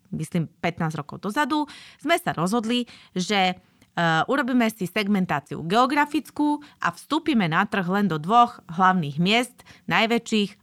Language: Slovak